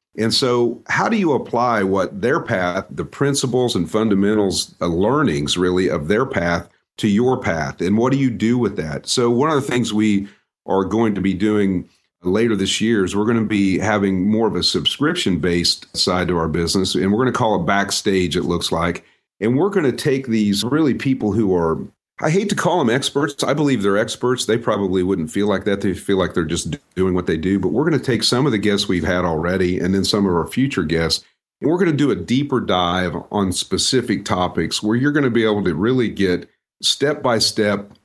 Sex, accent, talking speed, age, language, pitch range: male, American, 225 wpm, 40-59, English, 95-115 Hz